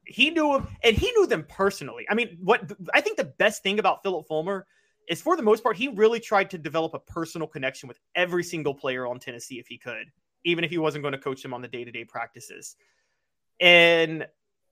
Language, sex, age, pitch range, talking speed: English, male, 30-49, 155-235 Hz, 220 wpm